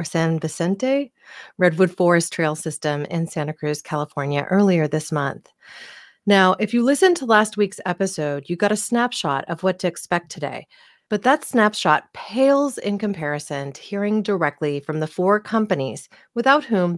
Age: 40-59